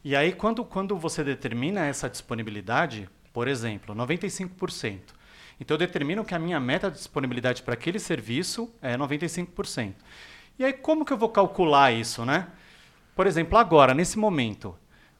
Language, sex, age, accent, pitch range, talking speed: Portuguese, male, 40-59, Brazilian, 125-185 Hz, 155 wpm